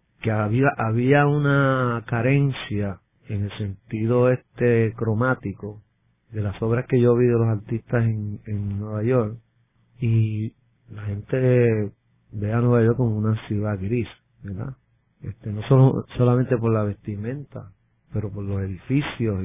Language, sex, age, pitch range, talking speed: English, male, 40-59, 105-125 Hz, 140 wpm